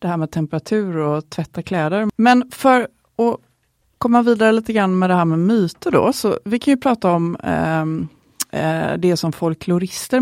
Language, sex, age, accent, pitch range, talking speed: Swedish, female, 30-49, native, 160-210 Hz, 170 wpm